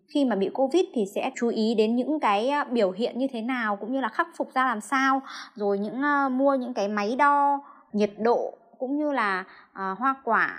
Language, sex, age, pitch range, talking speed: Vietnamese, male, 20-39, 190-265 Hz, 225 wpm